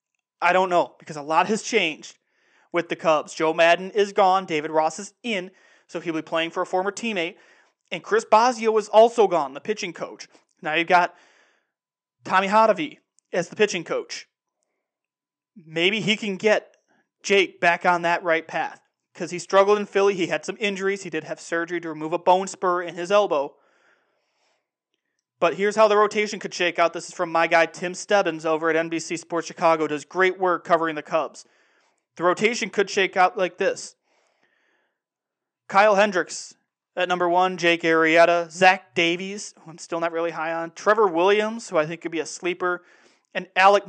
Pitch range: 165-200 Hz